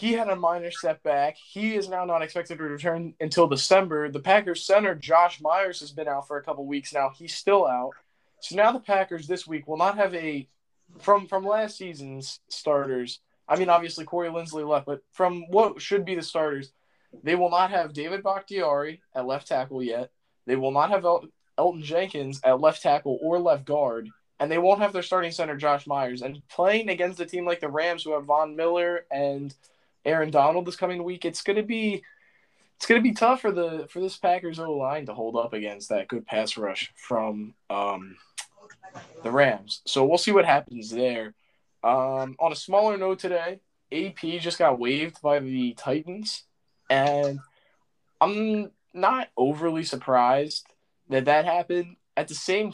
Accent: American